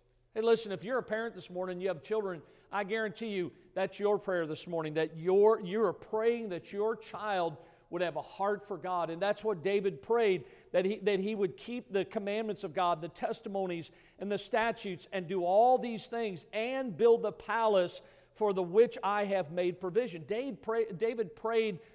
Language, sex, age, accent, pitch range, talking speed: English, male, 50-69, American, 175-220 Hz, 190 wpm